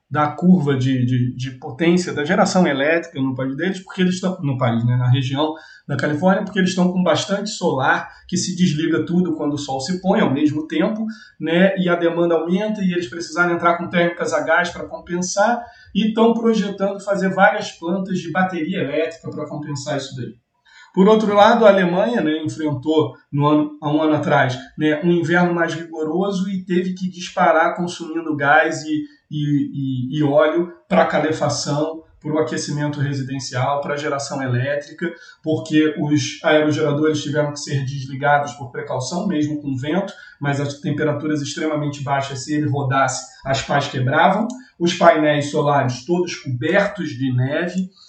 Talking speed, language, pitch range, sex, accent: 170 wpm, Portuguese, 145-185 Hz, male, Brazilian